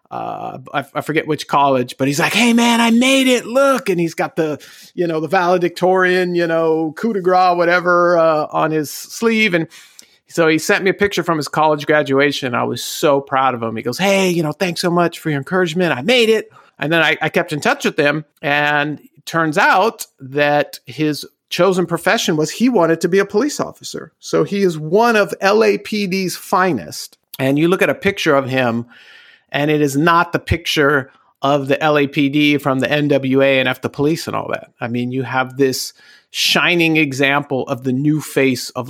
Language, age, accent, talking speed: English, 40-59, American, 210 wpm